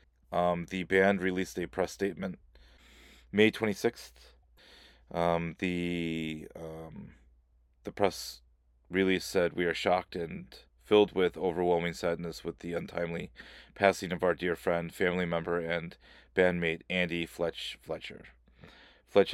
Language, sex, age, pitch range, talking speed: English, male, 30-49, 75-90 Hz, 125 wpm